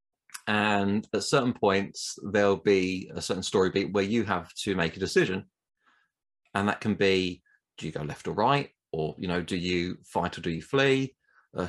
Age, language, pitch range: 30-49, English, 90-110 Hz